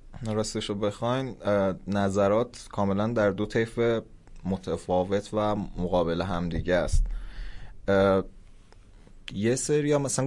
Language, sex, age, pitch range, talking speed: Persian, male, 20-39, 90-105 Hz, 95 wpm